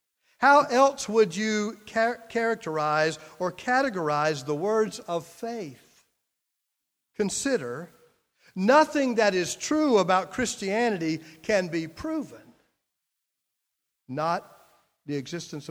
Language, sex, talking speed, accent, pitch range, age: English, male, 90 wpm, American, 175-245 Hz, 50-69